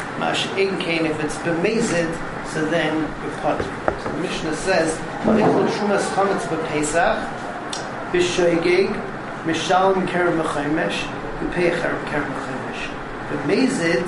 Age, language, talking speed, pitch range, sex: 40-59, English, 70 wpm, 155-190 Hz, male